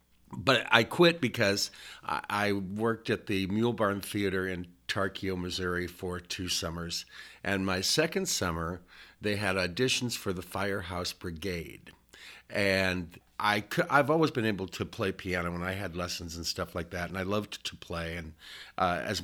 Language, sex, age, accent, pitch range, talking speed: English, male, 50-69, American, 85-105 Hz, 170 wpm